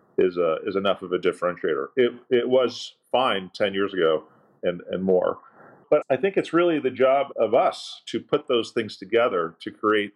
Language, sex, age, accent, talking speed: English, male, 40-59, American, 190 wpm